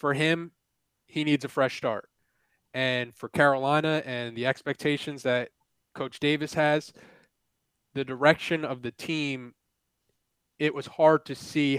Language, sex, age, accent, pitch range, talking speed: English, male, 20-39, American, 125-145 Hz, 135 wpm